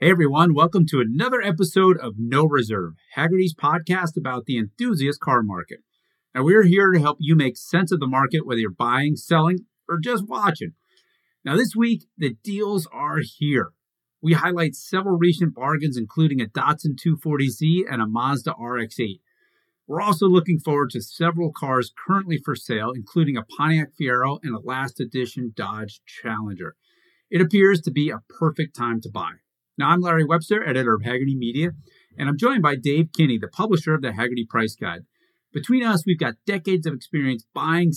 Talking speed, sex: 175 wpm, male